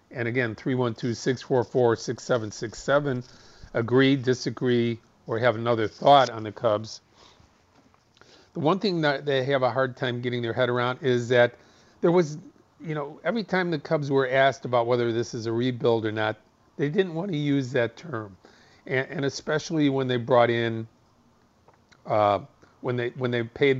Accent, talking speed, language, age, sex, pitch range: American, 185 wpm, English, 40-59, male, 115-140 Hz